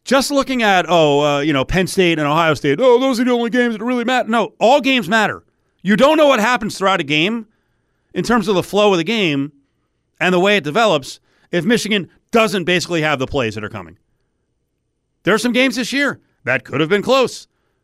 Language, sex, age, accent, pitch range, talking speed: English, male, 40-59, American, 120-180 Hz, 225 wpm